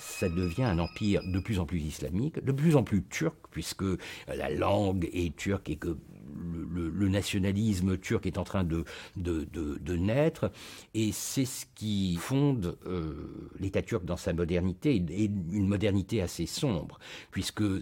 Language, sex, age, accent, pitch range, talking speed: French, male, 60-79, French, 90-130 Hz, 170 wpm